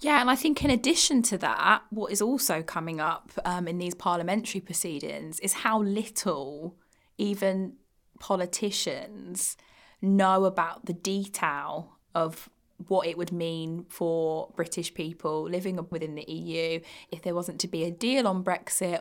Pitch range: 170-195 Hz